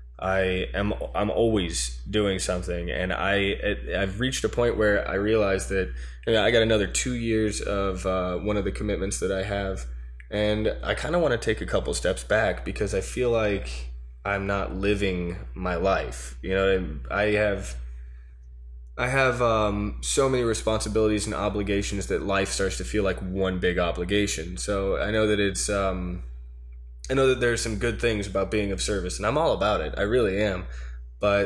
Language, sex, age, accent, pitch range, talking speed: English, male, 20-39, American, 85-105 Hz, 185 wpm